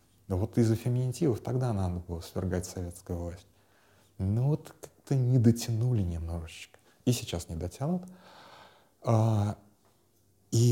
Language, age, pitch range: Russian, 30-49, 95-115 Hz